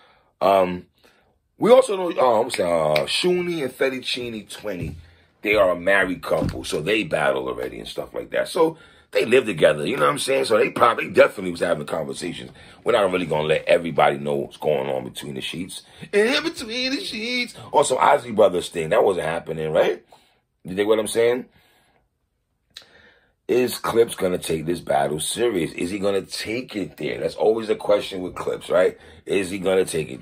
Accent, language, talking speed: American, English, 205 wpm